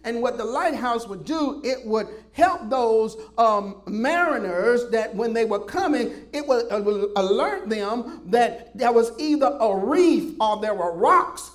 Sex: male